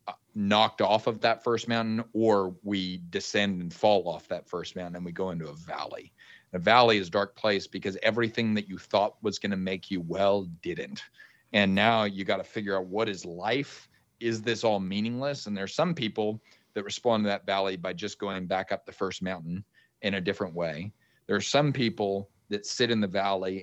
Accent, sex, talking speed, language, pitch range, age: American, male, 210 wpm, English, 95-110 Hz, 40-59